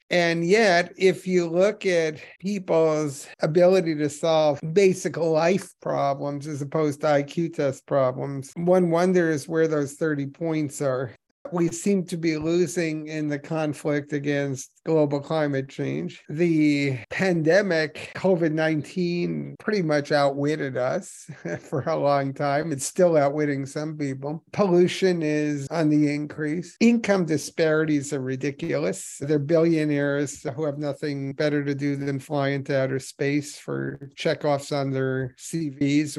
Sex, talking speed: male, 135 wpm